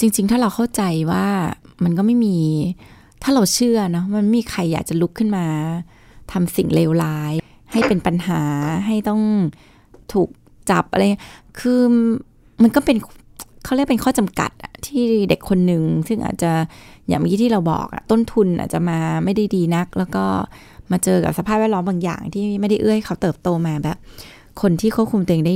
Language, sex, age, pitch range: Thai, female, 20-39, 170-215 Hz